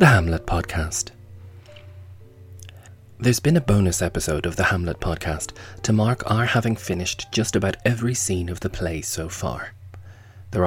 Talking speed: 150 wpm